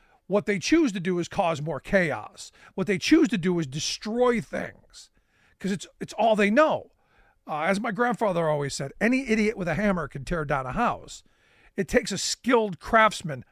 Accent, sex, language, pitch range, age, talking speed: American, male, English, 175-225 Hz, 50-69, 195 wpm